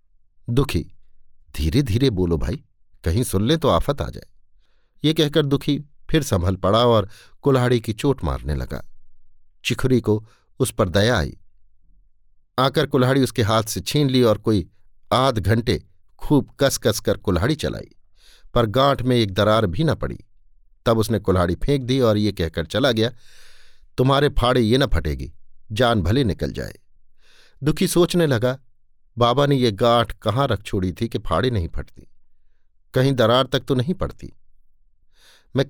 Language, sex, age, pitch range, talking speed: Hindi, male, 50-69, 95-135 Hz, 160 wpm